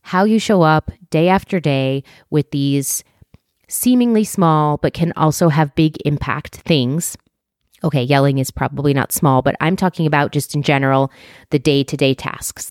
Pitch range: 140-165 Hz